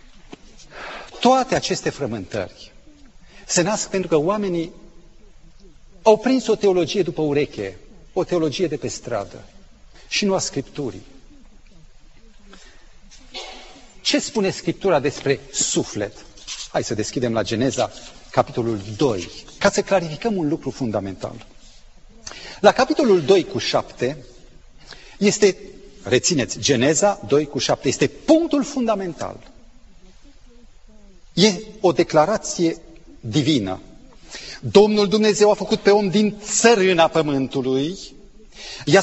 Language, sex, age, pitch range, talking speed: Romanian, male, 40-59, 145-215 Hz, 105 wpm